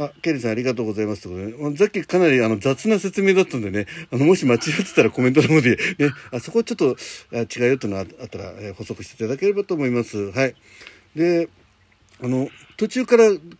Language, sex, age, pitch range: Japanese, male, 60-79, 110-155 Hz